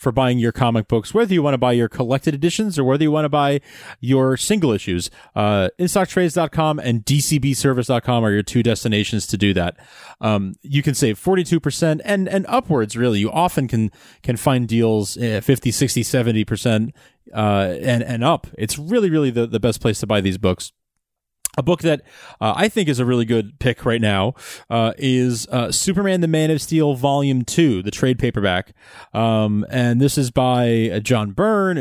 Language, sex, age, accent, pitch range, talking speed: English, male, 30-49, American, 110-150 Hz, 190 wpm